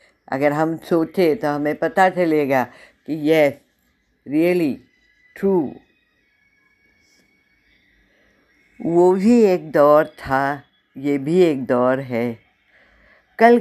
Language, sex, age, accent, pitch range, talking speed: Hindi, female, 60-79, native, 140-200 Hz, 95 wpm